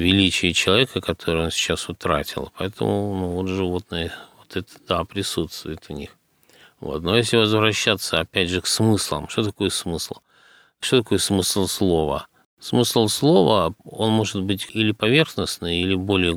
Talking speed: 140 wpm